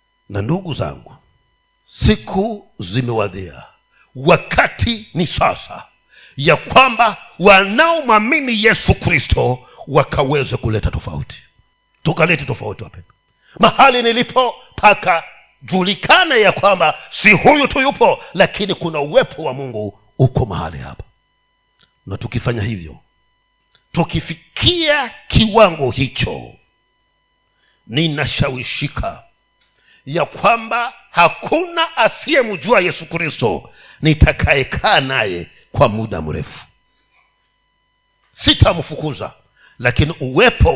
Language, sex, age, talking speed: Swahili, male, 50-69, 85 wpm